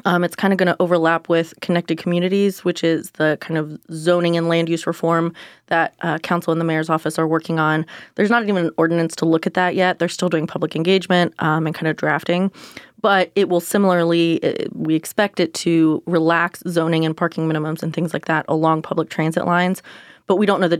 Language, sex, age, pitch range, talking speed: English, female, 20-39, 160-180 Hz, 220 wpm